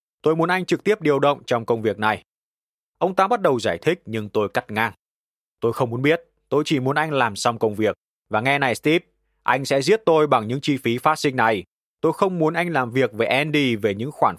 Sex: male